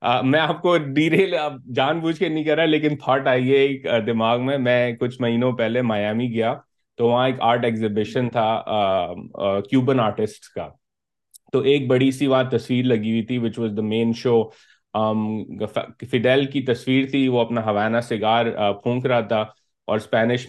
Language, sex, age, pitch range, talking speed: Urdu, male, 30-49, 115-130 Hz, 175 wpm